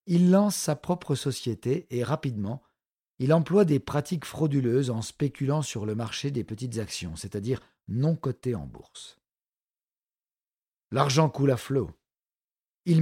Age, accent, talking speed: 50-69, French, 140 wpm